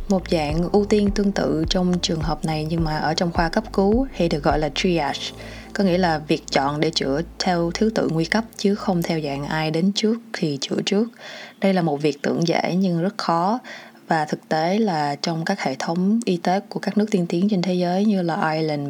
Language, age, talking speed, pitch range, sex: Vietnamese, 20-39, 235 wpm, 160-215 Hz, female